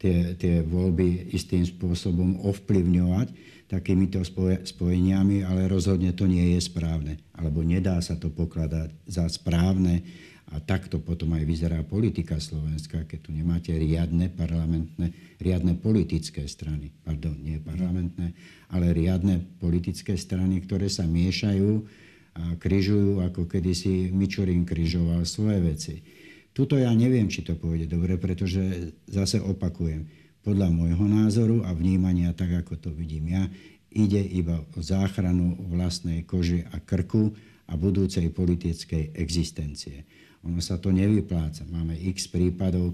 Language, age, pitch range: Slovak, 60-79, 85-95 Hz